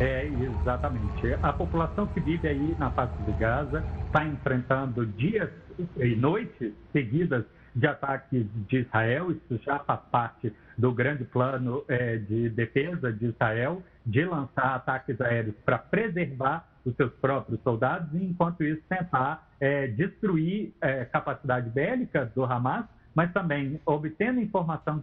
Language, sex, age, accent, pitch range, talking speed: Portuguese, male, 60-79, Brazilian, 110-155 Hz, 140 wpm